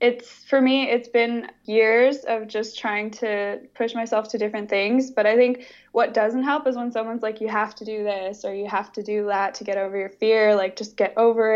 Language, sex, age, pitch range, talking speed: English, female, 10-29, 205-240 Hz, 235 wpm